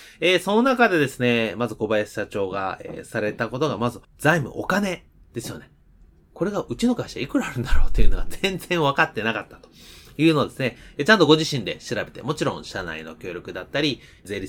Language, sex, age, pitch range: Japanese, male, 30-49, 110-170 Hz